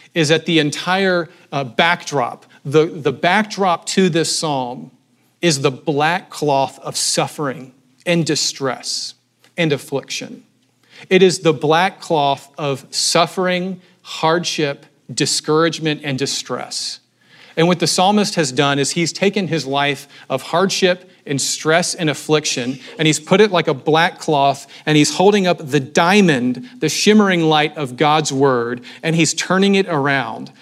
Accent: American